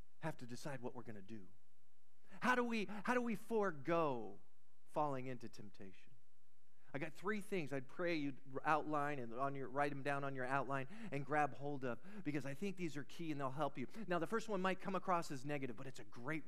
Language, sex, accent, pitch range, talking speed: English, male, American, 140-230 Hz, 225 wpm